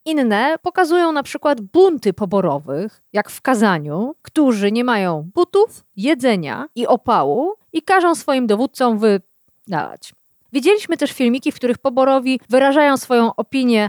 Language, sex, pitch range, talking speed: Polish, female, 210-305 Hz, 130 wpm